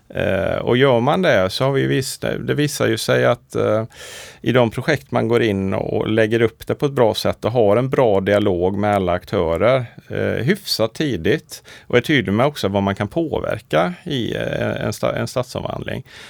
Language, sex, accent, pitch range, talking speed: Swedish, male, Norwegian, 105-145 Hz, 180 wpm